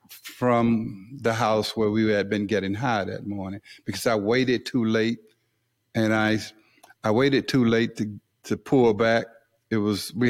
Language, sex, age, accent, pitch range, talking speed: English, male, 50-69, American, 110-135 Hz, 170 wpm